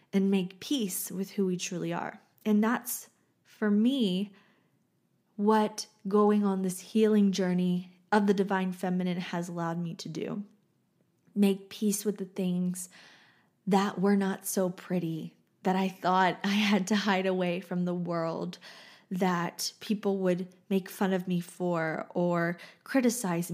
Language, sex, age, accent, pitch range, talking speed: English, female, 20-39, American, 180-210 Hz, 150 wpm